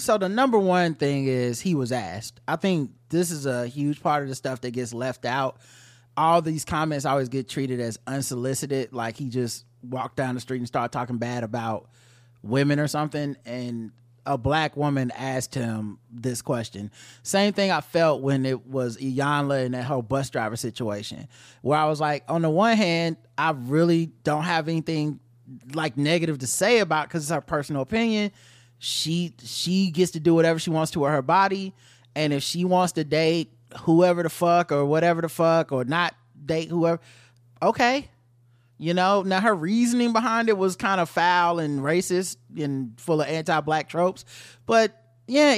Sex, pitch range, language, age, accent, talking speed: male, 125-175 Hz, English, 20-39, American, 185 wpm